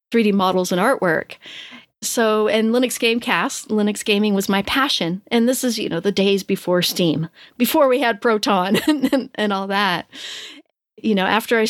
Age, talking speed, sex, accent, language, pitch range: 40-59, 175 wpm, female, American, English, 190-225 Hz